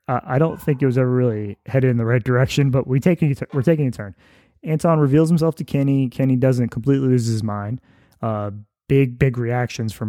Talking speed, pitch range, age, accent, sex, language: 210 wpm, 110-135 Hz, 20-39, American, male, English